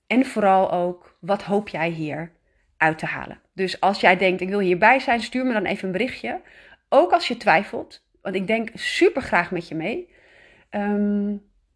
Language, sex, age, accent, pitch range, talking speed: Dutch, female, 30-49, Dutch, 180-230 Hz, 190 wpm